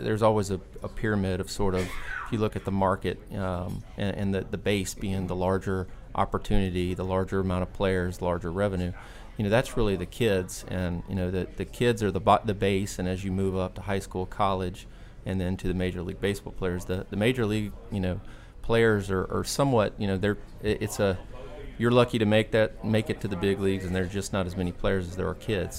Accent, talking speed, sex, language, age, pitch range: American, 235 wpm, male, English, 30-49, 90-105 Hz